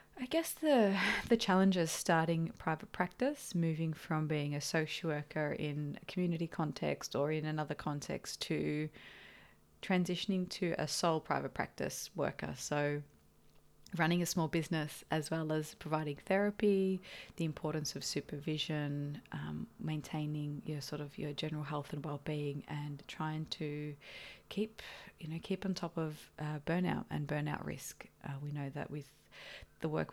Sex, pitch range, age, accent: female, 150-180 Hz, 20-39, Australian